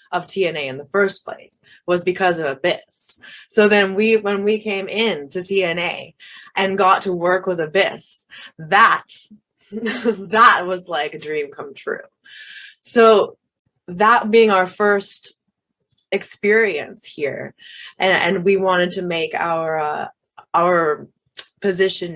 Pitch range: 165-210 Hz